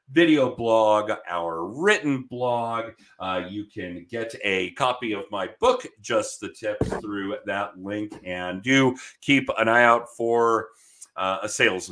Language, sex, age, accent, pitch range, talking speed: English, male, 40-59, American, 95-140 Hz, 150 wpm